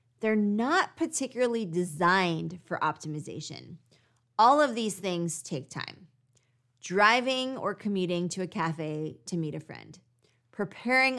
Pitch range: 155-205 Hz